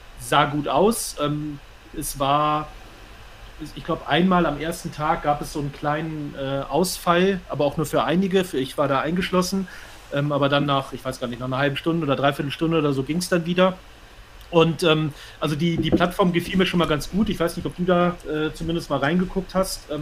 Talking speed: 200 wpm